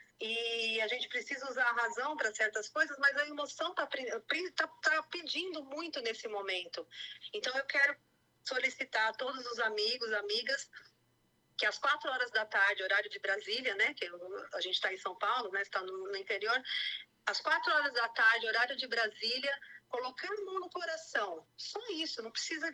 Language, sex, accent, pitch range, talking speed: Portuguese, female, Brazilian, 230-335 Hz, 180 wpm